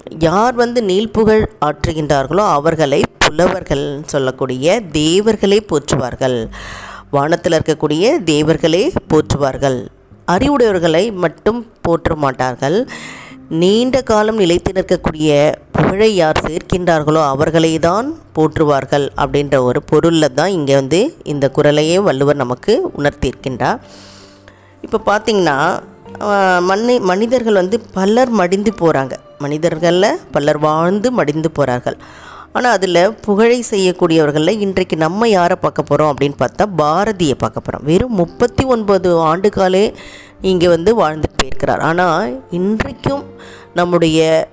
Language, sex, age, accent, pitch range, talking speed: Tamil, female, 20-39, native, 145-190 Hz, 100 wpm